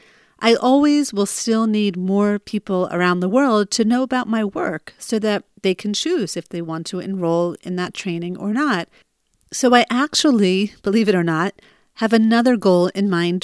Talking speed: 190 wpm